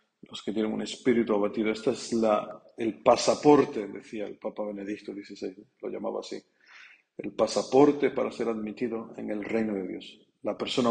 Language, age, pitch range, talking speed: Spanish, 50-69, 105-125 Hz, 170 wpm